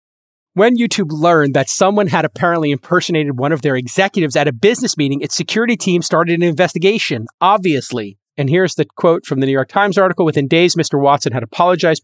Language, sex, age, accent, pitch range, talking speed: English, male, 30-49, American, 140-175 Hz, 195 wpm